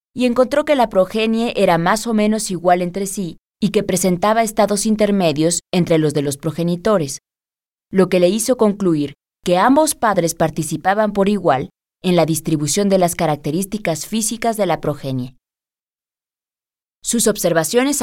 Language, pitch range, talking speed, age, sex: Spanish, 155-210 Hz, 150 wpm, 20-39, female